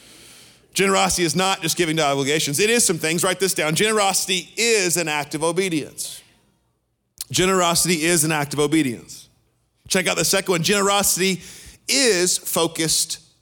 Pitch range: 115-160 Hz